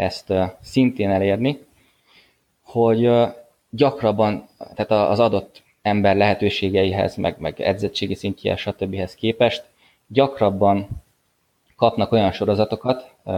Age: 20-39